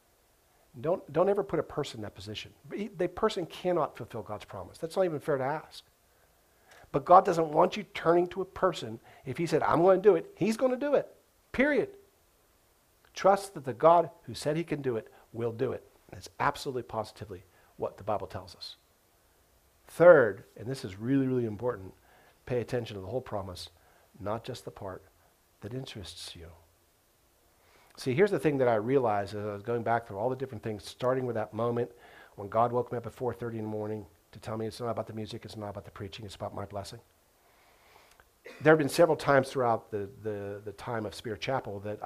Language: English